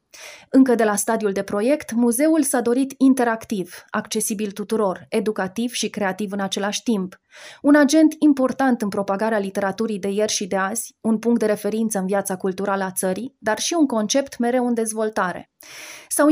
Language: Romanian